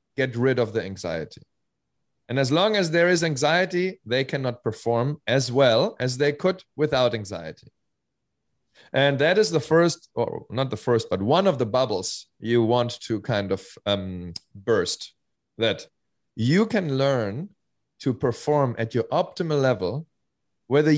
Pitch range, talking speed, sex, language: 110-150 Hz, 155 wpm, male, English